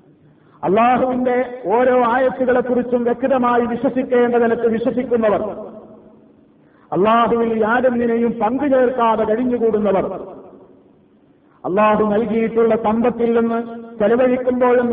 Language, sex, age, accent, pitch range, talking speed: Malayalam, male, 50-69, native, 190-245 Hz, 65 wpm